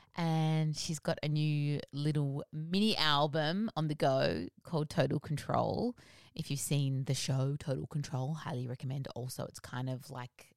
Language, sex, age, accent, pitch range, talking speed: English, female, 20-39, Australian, 130-160 Hz, 160 wpm